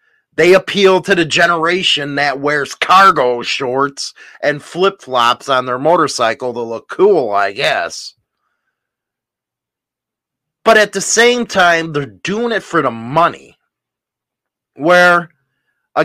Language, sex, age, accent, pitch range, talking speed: English, male, 30-49, American, 150-200 Hz, 120 wpm